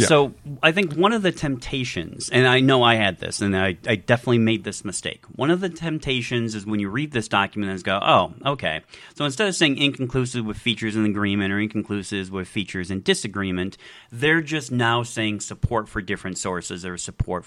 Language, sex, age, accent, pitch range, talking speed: English, male, 40-59, American, 105-135 Hz, 205 wpm